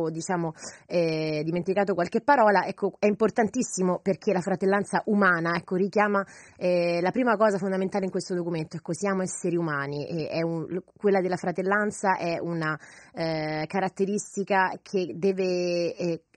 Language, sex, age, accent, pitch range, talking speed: Italian, female, 20-39, native, 175-210 Hz, 145 wpm